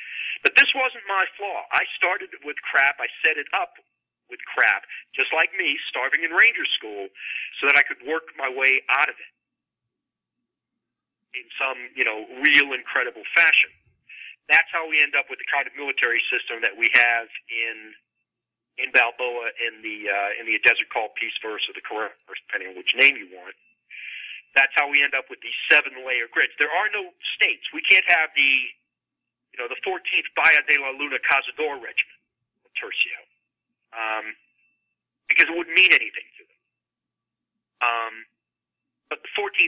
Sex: male